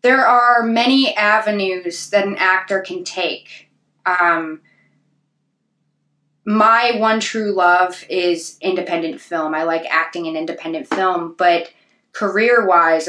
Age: 20-39